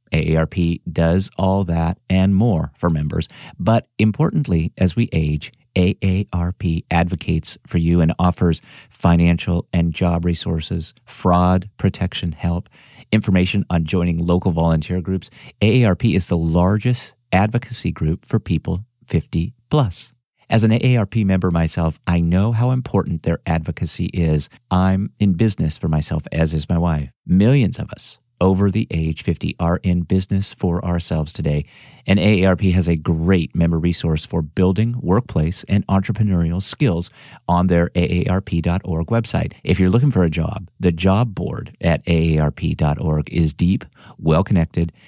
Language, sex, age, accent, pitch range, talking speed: English, male, 50-69, American, 85-100 Hz, 140 wpm